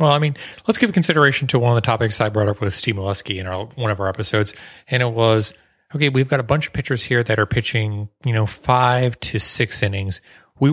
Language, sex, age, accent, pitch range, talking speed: English, male, 30-49, American, 105-140 Hz, 240 wpm